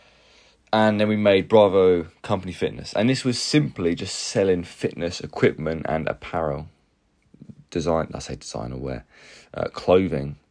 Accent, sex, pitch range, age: British, male, 75-95 Hz, 20-39